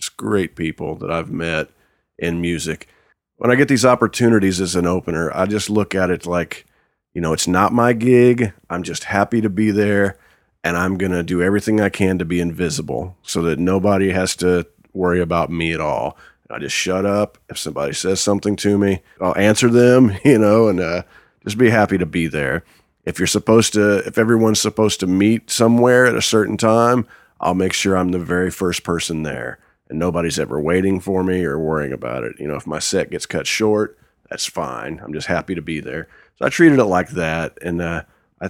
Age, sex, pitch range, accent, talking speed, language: 40-59, male, 85-105 Hz, American, 210 wpm, English